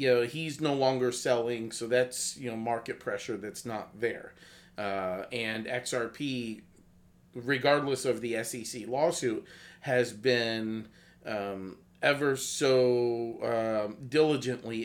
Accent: American